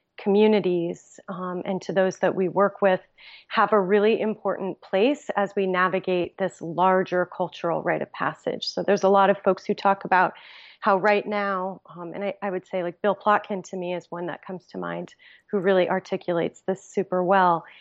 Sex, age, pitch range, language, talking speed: female, 30-49, 180-200 Hz, English, 195 wpm